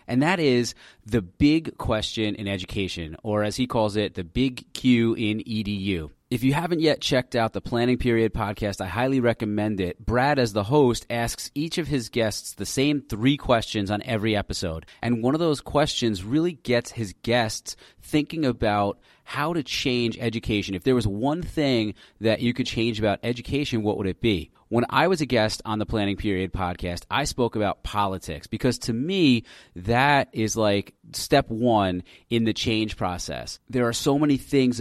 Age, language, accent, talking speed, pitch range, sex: 30-49, English, American, 190 wpm, 105-125 Hz, male